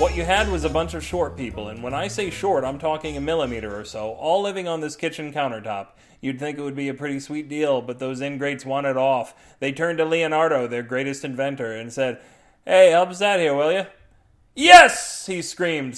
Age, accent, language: 30-49, American, English